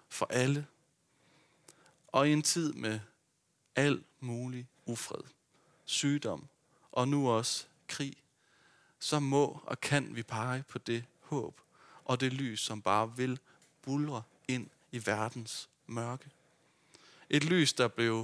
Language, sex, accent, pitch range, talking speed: Danish, male, native, 115-150 Hz, 130 wpm